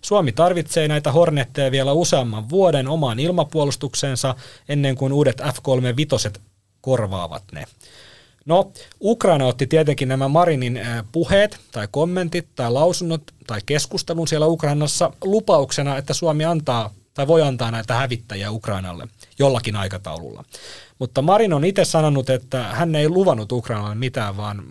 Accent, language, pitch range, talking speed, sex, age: native, Finnish, 120-160 Hz, 130 wpm, male, 30-49